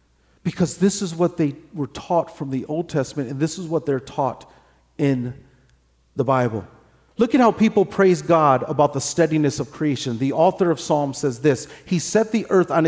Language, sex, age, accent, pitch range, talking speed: English, male, 40-59, American, 150-190 Hz, 195 wpm